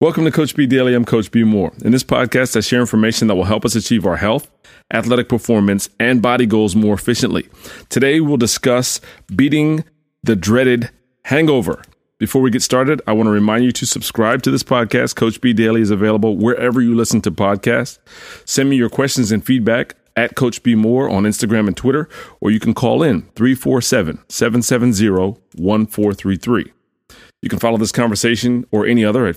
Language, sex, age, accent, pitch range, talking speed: English, male, 30-49, American, 100-125 Hz, 180 wpm